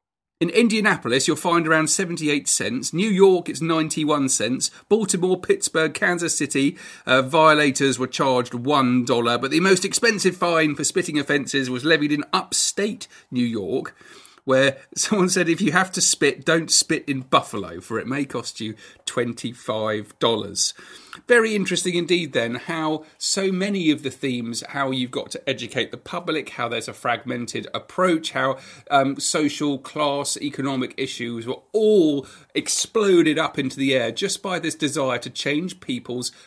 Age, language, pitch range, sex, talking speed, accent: 40-59, English, 125-170 Hz, male, 155 wpm, British